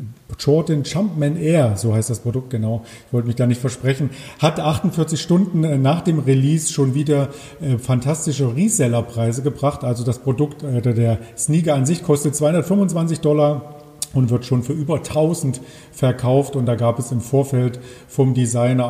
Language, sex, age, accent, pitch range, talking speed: German, male, 40-59, German, 125-150 Hz, 160 wpm